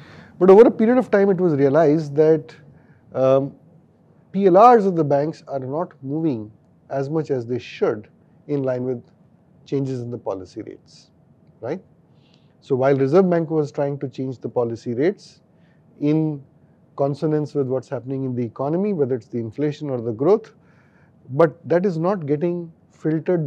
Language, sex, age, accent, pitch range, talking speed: English, male, 30-49, Indian, 135-170 Hz, 165 wpm